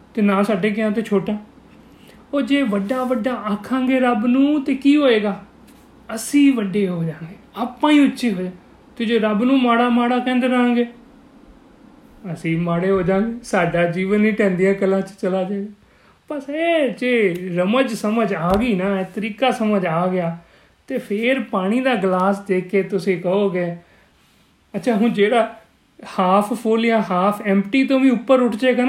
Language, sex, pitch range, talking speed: Punjabi, male, 185-250 Hz, 150 wpm